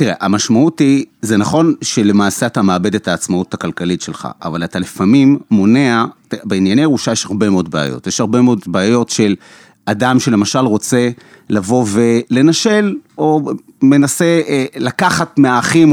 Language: Hebrew